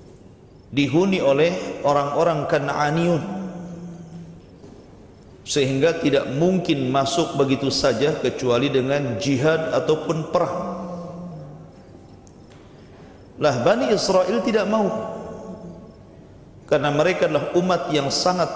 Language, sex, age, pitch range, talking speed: Indonesian, male, 50-69, 135-175 Hz, 85 wpm